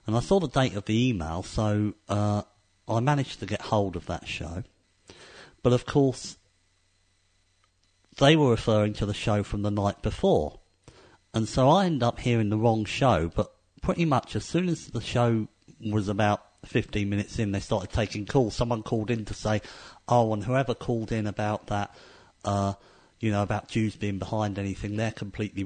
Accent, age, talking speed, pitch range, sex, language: British, 50-69, 185 wpm, 100-120 Hz, male, English